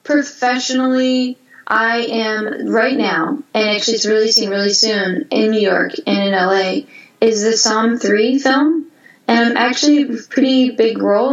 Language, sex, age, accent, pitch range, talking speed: English, female, 10-29, American, 200-245 Hz, 155 wpm